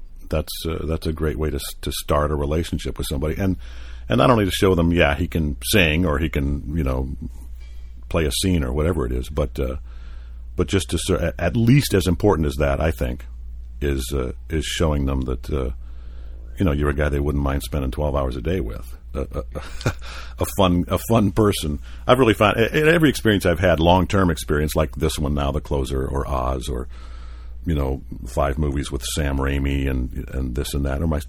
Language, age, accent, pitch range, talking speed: English, 50-69, American, 65-85 Hz, 215 wpm